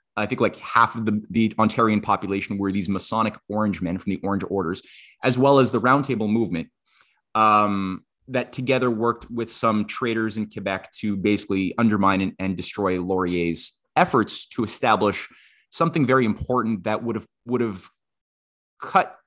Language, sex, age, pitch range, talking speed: English, male, 20-39, 100-125 Hz, 160 wpm